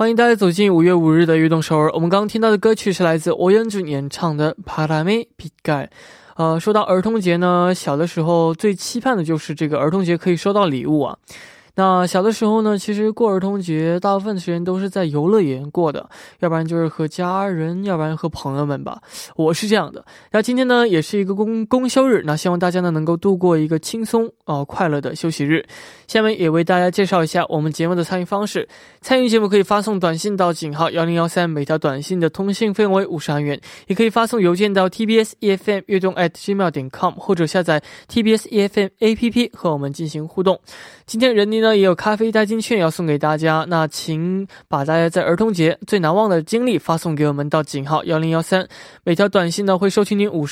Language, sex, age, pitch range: Korean, male, 20-39, 160-205 Hz